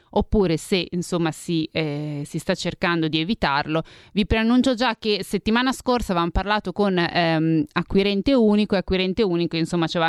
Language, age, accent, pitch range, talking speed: Italian, 20-39, native, 165-215 Hz, 165 wpm